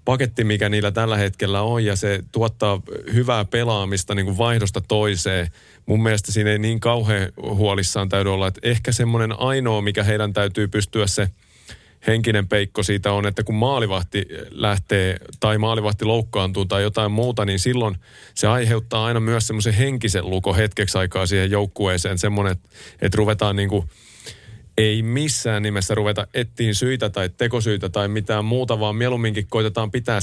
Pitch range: 100-115 Hz